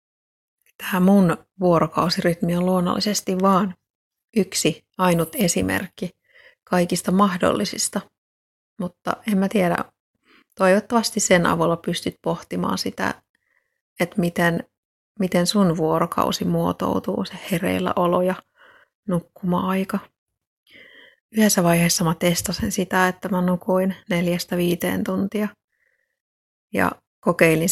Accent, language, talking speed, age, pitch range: native, Finnish, 95 wpm, 30-49, 170-195 Hz